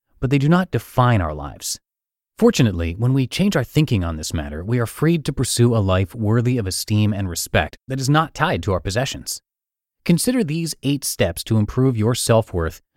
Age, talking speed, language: 30-49, 200 wpm, English